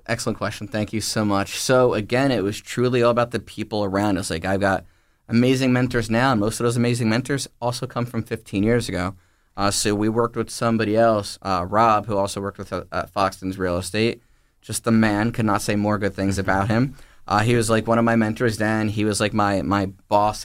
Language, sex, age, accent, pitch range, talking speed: English, male, 20-39, American, 100-120 Hz, 230 wpm